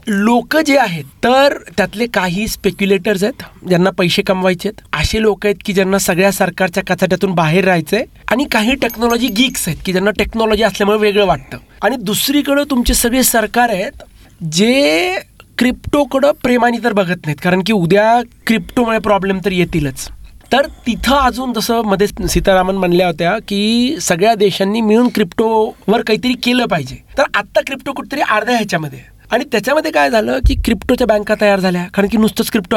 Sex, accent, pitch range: male, native, 195-240 Hz